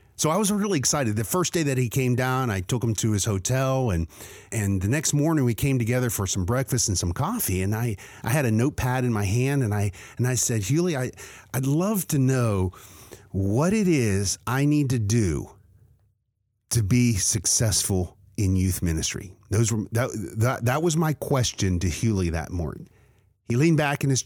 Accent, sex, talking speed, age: American, male, 205 wpm, 50-69